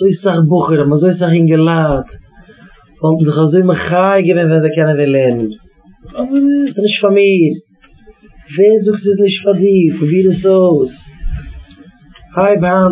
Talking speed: 135 wpm